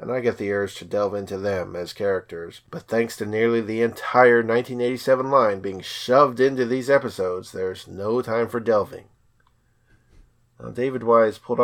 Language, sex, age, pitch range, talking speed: English, male, 40-59, 100-120 Hz, 170 wpm